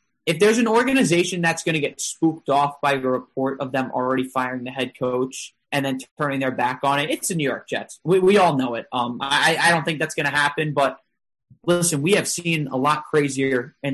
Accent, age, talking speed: American, 20-39, 235 wpm